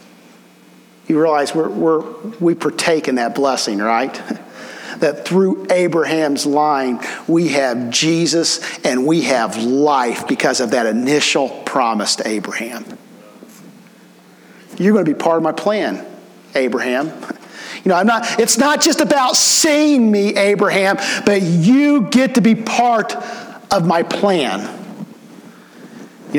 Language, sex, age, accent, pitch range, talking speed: English, male, 50-69, American, 175-235 Hz, 130 wpm